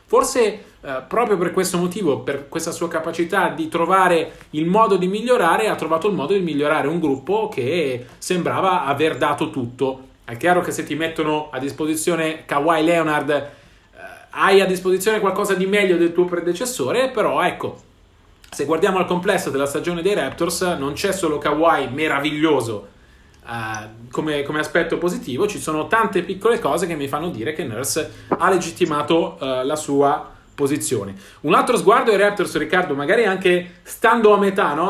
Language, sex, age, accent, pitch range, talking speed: Italian, male, 30-49, native, 145-180 Hz, 170 wpm